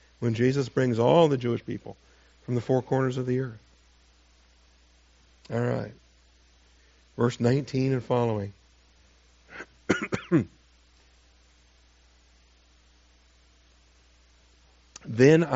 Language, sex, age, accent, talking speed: English, male, 60-79, American, 80 wpm